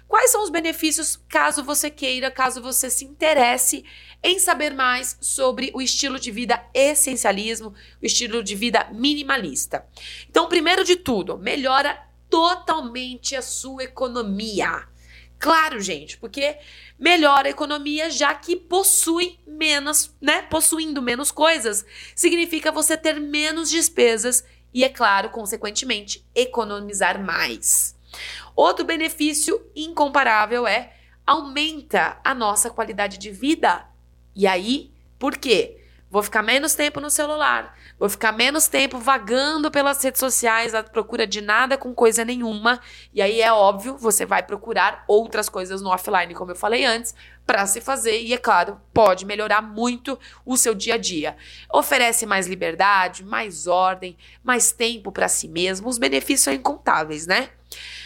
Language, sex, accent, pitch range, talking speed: Portuguese, female, Brazilian, 215-300 Hz, 145 wpm